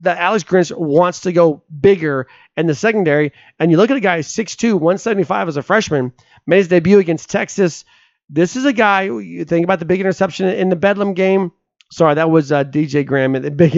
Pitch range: 150-195 Hz